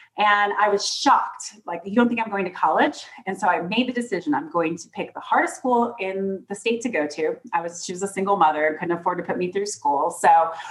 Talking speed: 260 wpm